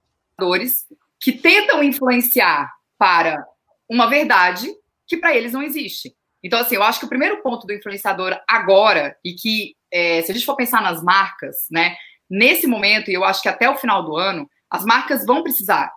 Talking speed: 180 wpm